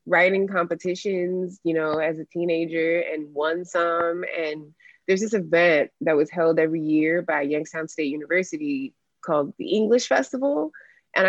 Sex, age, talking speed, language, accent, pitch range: female, 20-39, 150 wpm, English, American, 155-190 Hz